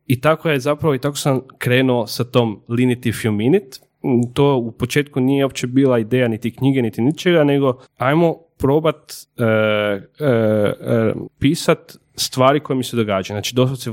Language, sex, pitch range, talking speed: Croatian, male, 110-140 Hz, 165 wpm